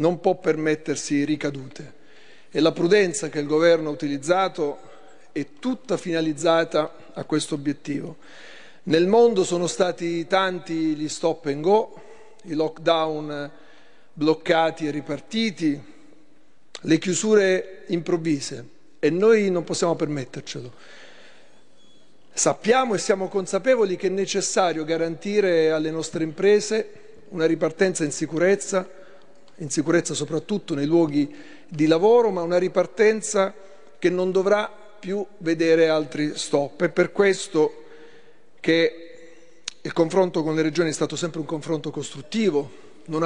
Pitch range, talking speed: 155-195 Hz, 120 wpm